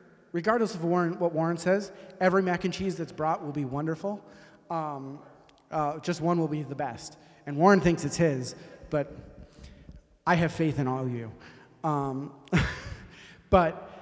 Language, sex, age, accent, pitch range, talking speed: English, male, 30-49, American, 140-180 Hz, 165 wpm